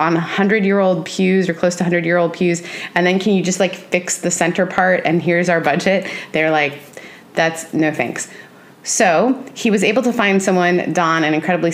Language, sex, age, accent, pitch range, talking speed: English, female, 20-39, American, 150-185 Hz, 210 wpm